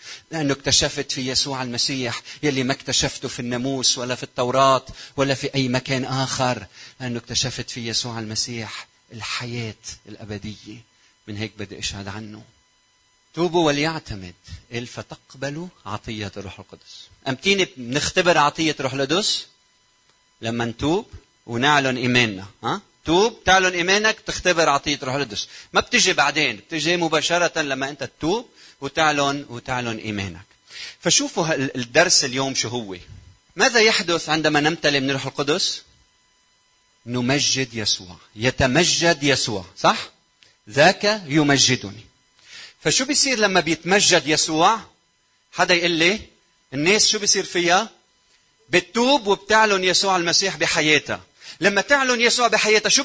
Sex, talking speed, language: male, 120 wpm, Arabic